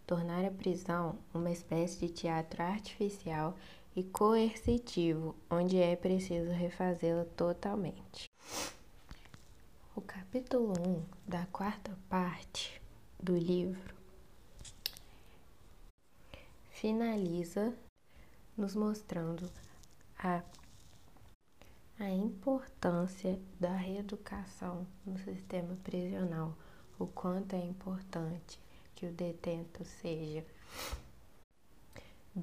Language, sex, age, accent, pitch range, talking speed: Portuguese, female, 20-39, Brazilian, 170-190 Hz, 80 wpm